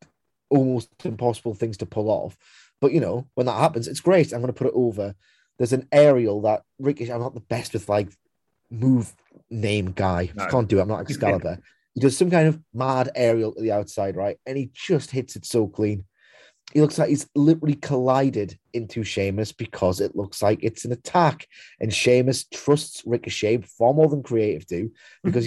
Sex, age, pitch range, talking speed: male, 30-49, 105-140 Hz, 200 wpm